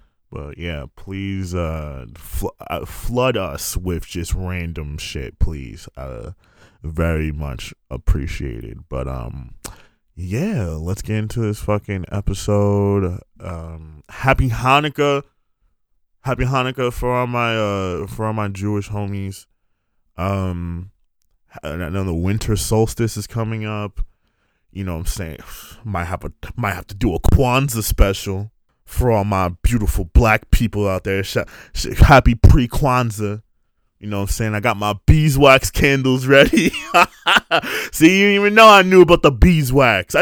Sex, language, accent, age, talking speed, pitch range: male, English, American, 20-39, 145 wpm, 90-130 Hz